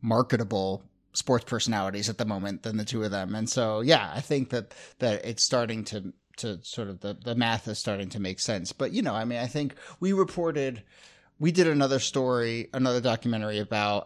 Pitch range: 105-130 Hz